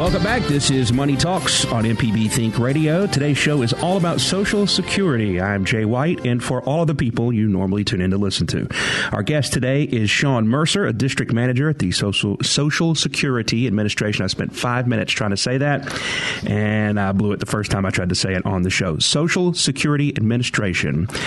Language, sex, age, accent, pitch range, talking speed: English, male, 40-59, American, 105-140 Hz, 205 wpm